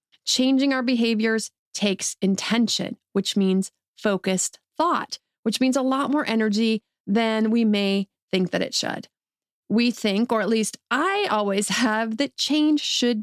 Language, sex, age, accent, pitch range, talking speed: English, female, 30-49, American, 210-260 Hz, 150 wpm